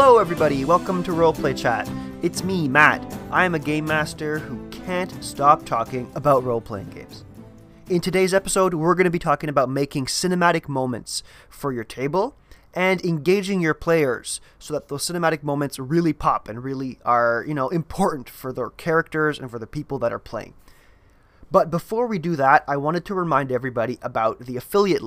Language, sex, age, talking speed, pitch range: English, male, 20-39, 180 wpm, 130-170 Hz